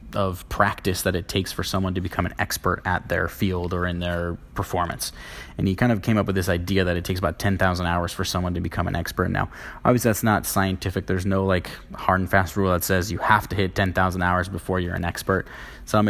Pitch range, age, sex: 90-105 Hz, 20-39, male